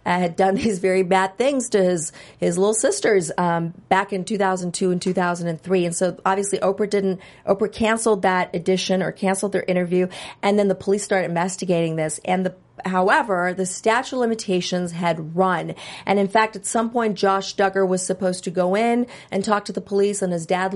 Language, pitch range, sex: English, 180-205 Hz, female